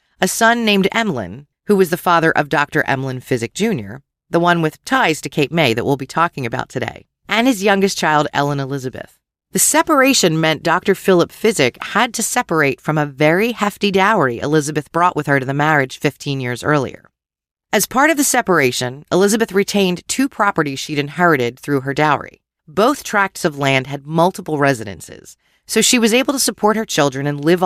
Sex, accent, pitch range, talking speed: female, American, 145-205 Hz, 190 wpm